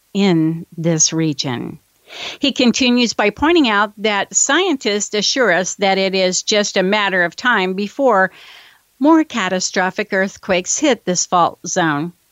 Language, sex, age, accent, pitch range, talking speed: English, female, 50-69, American, 180-220 Hz, 135 wpm